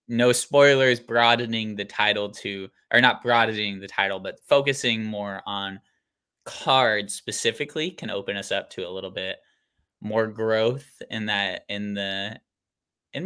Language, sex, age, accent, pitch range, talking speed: English, male, 10-29, American, 105-120 Hz, 145 wpm